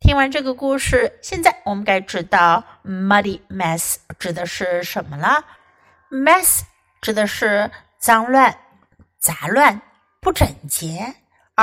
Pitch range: 200-295 Hz